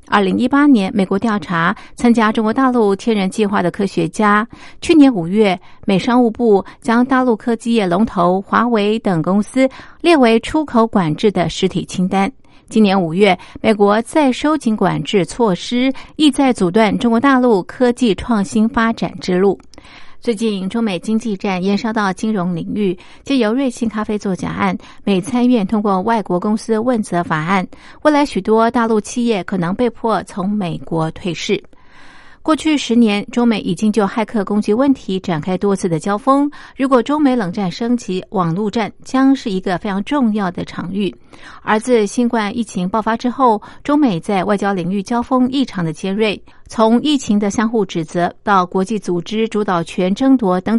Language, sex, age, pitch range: Chinese, female, 50-69, 190-235 Hz